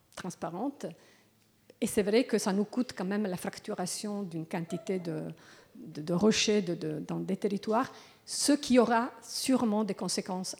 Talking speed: 165 wpm